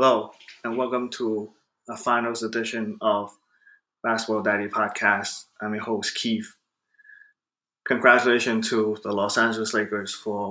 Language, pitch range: English, 105-125 Hz